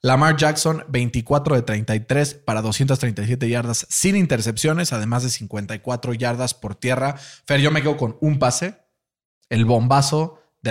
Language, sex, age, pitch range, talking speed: Spanish, male, 20-39, 120-150 Hz, 145 wpm